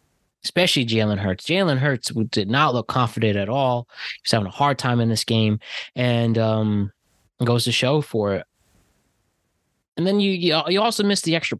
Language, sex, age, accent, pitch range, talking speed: English, male, 20-39, American, 105-130 Hz, 175 wpm